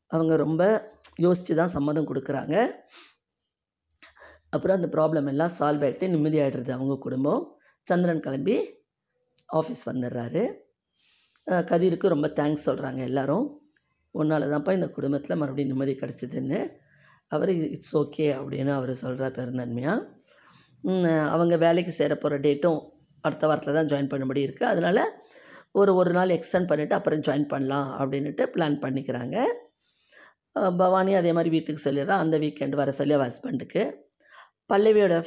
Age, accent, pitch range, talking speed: 20-39, native, 140-170 Hz, 125 wpm